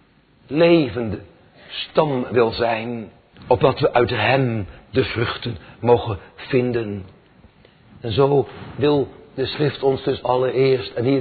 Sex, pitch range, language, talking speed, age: male, 105-140 Hz, Dutch, 120 wpm, 60-79